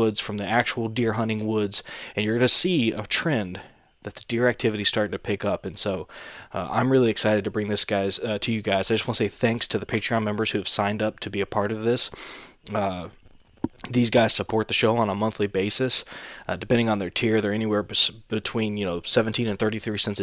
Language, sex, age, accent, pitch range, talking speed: English, male, 20-39, American, 105-115 Hz, 240 wpm